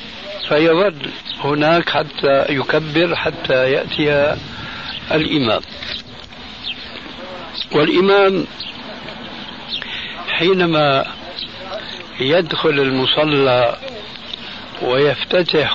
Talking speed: 45 wpm